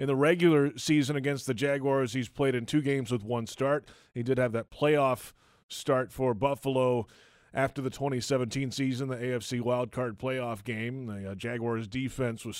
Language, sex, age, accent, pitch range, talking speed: English, male, 30-49, American, 120-150 Hz, 170 wpm